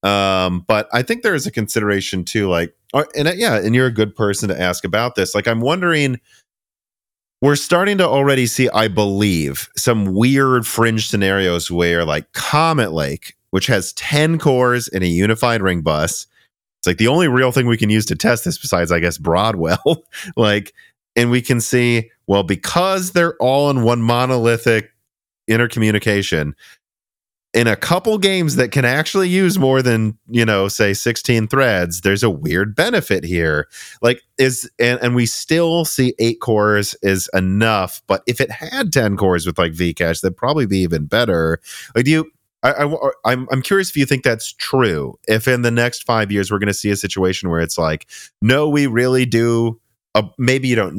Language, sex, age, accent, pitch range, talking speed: English, male, 30-49, American, 95-130 Hz, 185 wpm